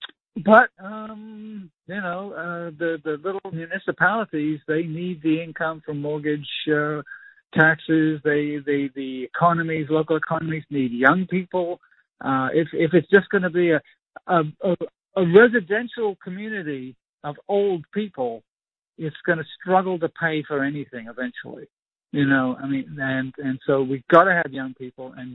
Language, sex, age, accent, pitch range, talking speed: English, male, 50-69, American, 145-185 Hz, 155 wpm